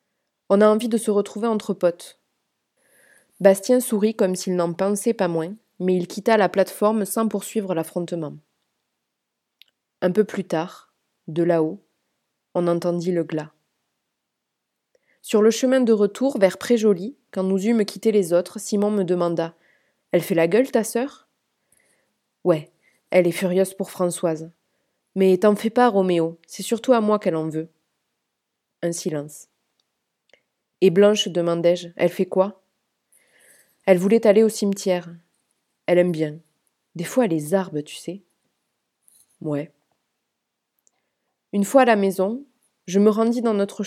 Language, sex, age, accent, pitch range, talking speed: French, female, 20-39, French, 175-215 Hz, 150 wpm